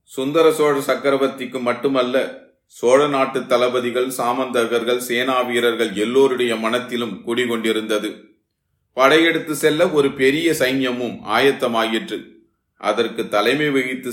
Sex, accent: male, native